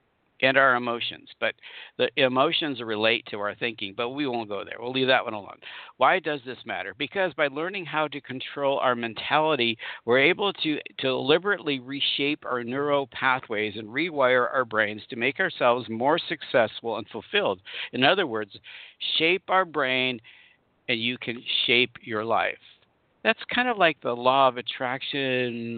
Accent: American